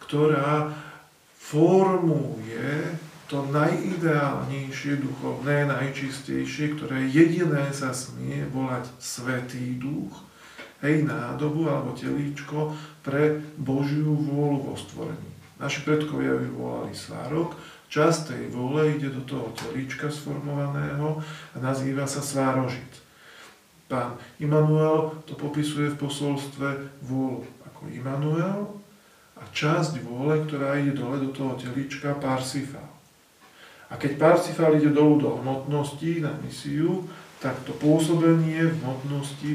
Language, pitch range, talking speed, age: Slovak, 135-155 Hz, 110 wpm, 40-59